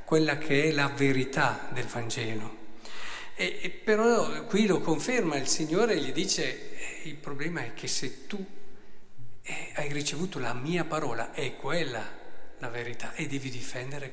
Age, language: 50-69, Italian